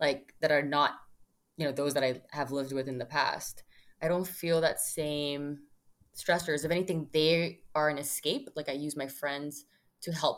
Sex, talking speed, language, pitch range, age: female, 195 wpm, English, 145-190 Hz, 20-39